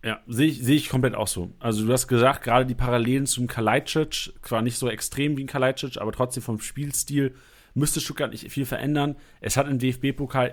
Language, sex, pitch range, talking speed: German, male, 120-145 Hz, 210 wpm